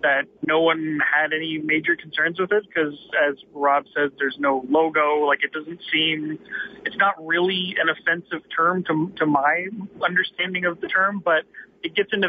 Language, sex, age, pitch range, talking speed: English, male, 30-49, 140-165 Hz, 180 wpm